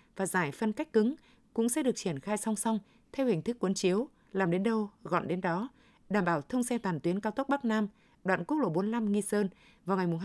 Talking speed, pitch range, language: 240 wpm, 185-230 Hz, Vietnamese